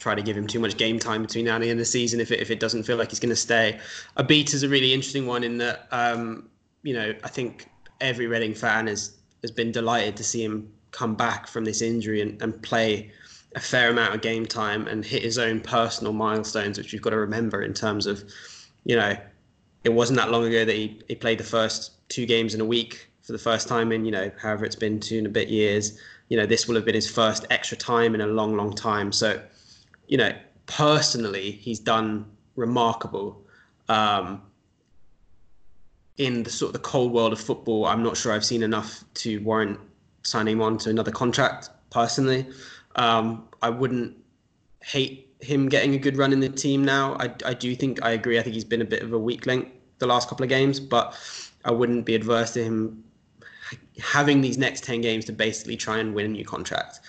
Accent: British